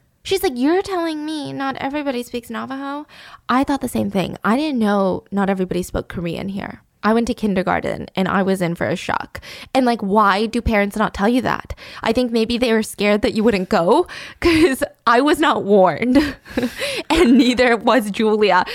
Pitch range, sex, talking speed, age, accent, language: 185-245 Hz, female, 195 wpm, 20-39, American, English